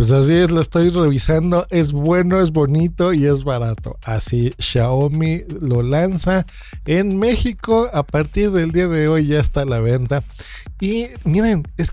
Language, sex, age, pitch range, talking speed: Spanish, male, 50-69, 125-175 Hz, 165 wpm